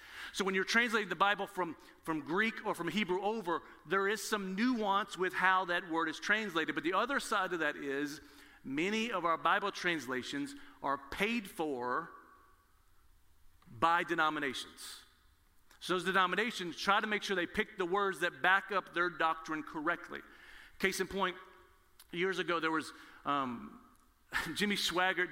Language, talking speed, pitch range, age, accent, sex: English, 160 wpm, 165-210 Hz, 40-59, American, male